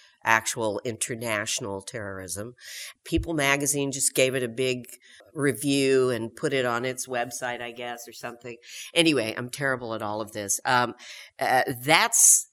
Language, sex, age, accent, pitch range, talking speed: English, female, 50-69, American, 115-135 Hz, 150 wpm